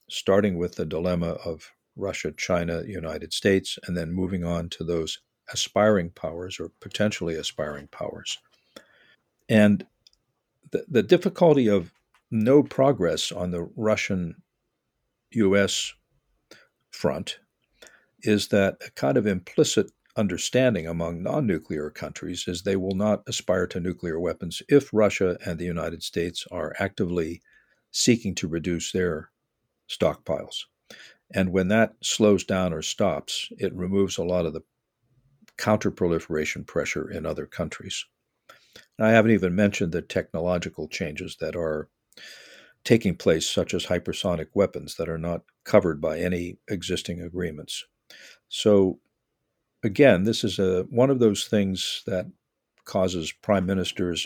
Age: 60-79